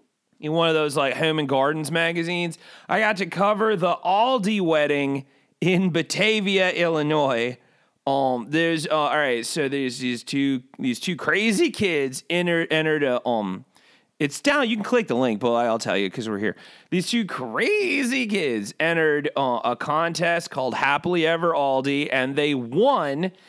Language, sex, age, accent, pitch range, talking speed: English, male, 30-49, American, 140-185 Hz, 165 wpm